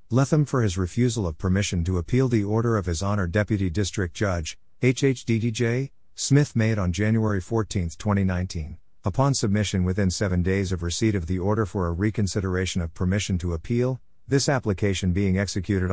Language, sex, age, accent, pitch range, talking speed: English, male, 50-69, American, 90-110 Hz, 165 wpm